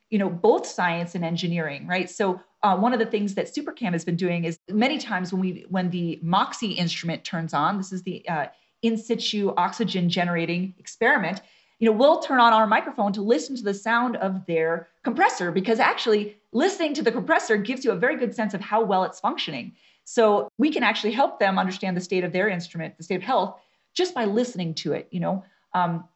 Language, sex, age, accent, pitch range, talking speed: English, female, 30-49, American, 180-230 Hz, 215 wpm